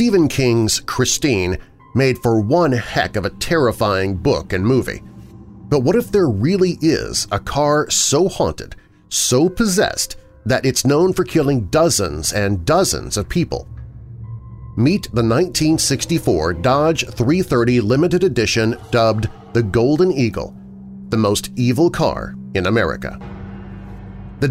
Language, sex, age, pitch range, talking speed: English, male, 40-59, 105-145 Hz, 130 wpm